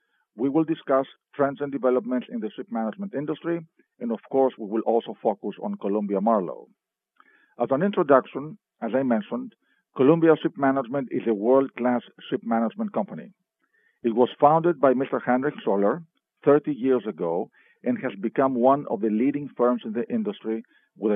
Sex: male